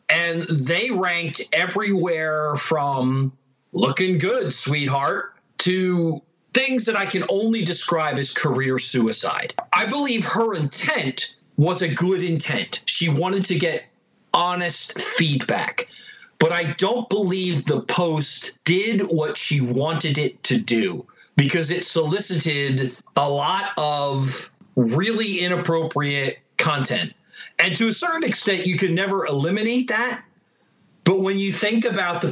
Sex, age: male, 40-59